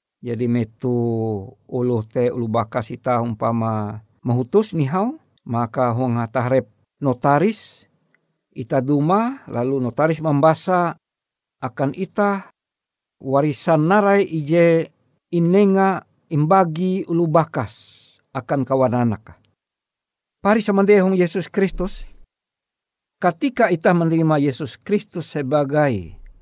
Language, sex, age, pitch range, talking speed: Indonesian, male, 60-79, 130-180 Hz, 85 wpm